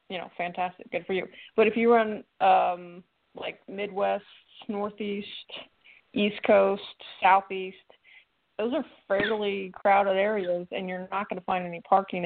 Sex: female